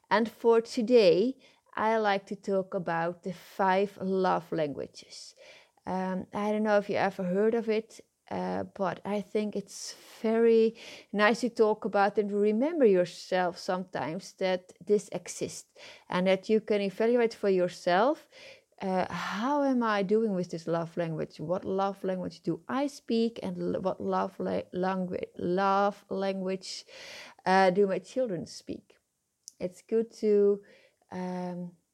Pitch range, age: 185-230 Hz, 20-39